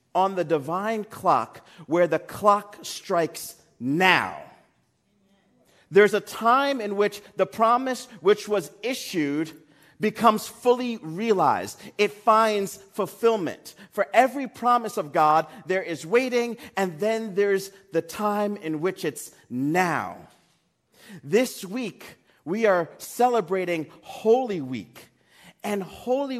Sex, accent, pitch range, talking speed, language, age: male, American, 175-220 Hz, 115 wpm, English, 40-59